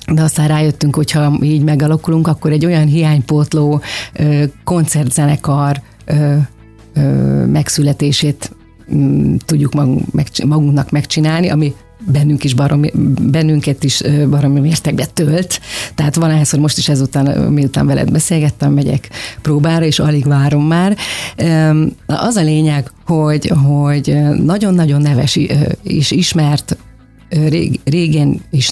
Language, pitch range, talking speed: Hungarian, 140-155 Hz, 110 wpm